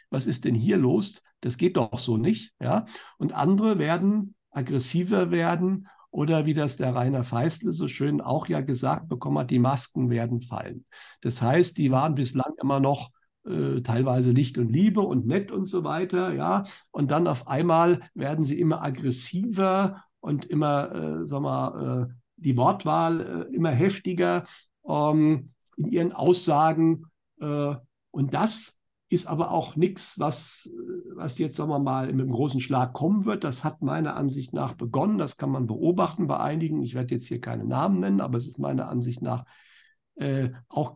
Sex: male